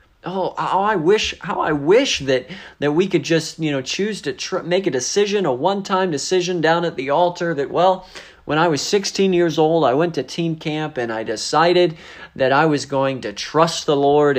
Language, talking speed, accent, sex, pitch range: English, 205 wpm, American, male, 135-180 Hz